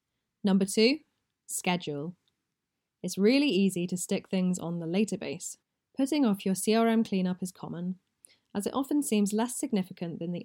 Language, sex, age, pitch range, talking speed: English, female, 10-29, 175-225 Hz, 160 wpm